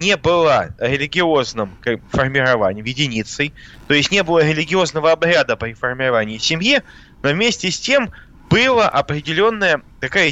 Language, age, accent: Russian, 20-39, native